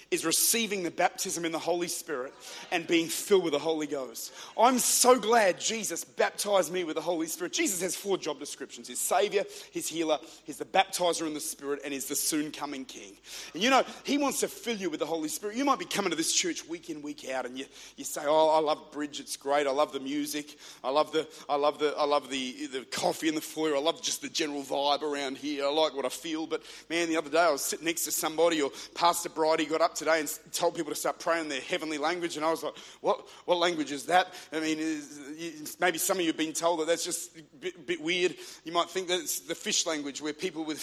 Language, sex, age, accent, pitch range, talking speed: English, male, 40-59, Australian, 155-230 Hz, 255 wpm